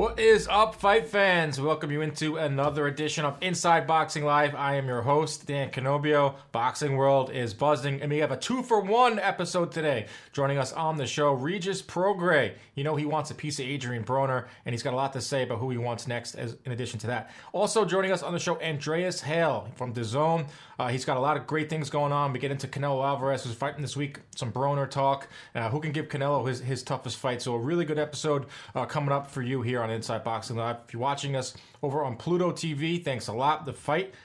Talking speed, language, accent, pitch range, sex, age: 235 wpm, English, American, 125-155 Hz, male, 30-49